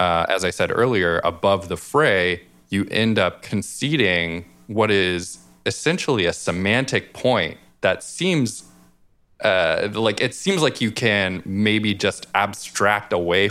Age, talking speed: 20-39, 135 wpm